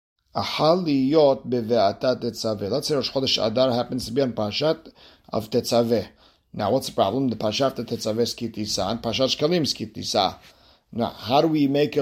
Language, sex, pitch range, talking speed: English, male, 115-135 Hz, 155 wpm